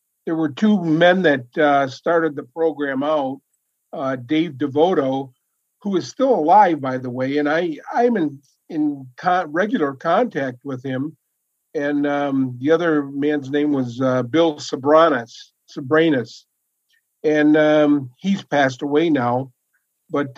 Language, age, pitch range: English, 50-69, 140-165 Hz